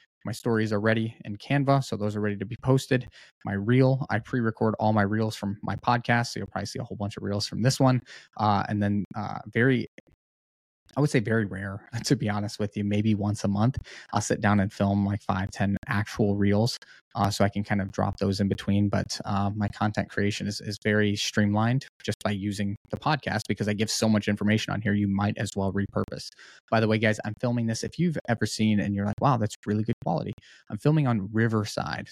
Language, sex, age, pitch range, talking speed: English, male, 20-39, 100-115 Hz, 235 wpm